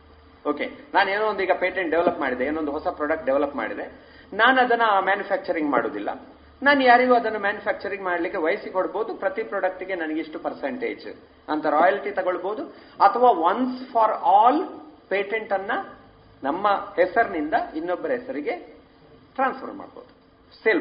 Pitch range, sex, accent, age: 175-240 Hz, male, native, 40-59